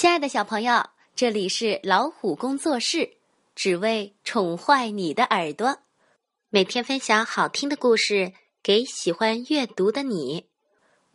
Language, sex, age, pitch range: Chinese, female, 20-39, 200-265 Hz